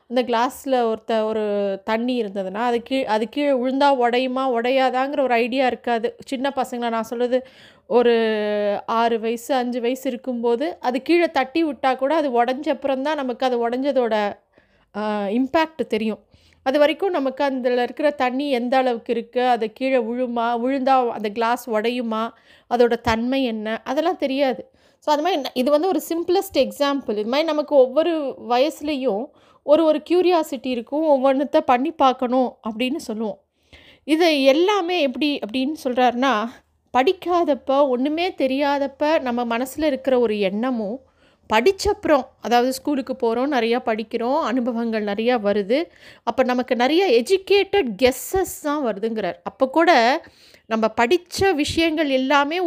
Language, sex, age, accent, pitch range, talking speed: Tamil, female, 20-39, native, 235-295 Hz, 130 wpm